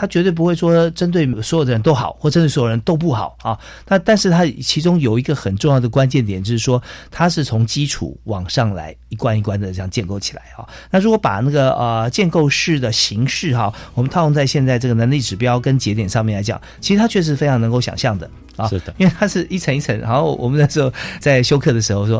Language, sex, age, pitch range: Chinese, male, 50-69, 110-155 Hz